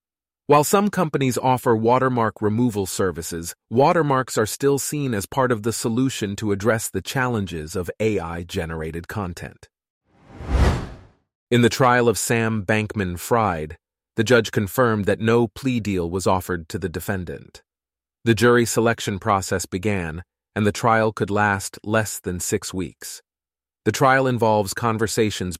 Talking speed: 140 wpm